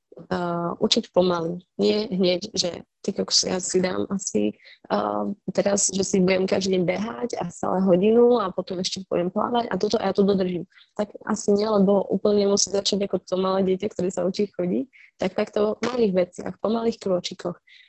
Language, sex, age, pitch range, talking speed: Slovak, female, 20-39, 175-210 Hz, 190 wpm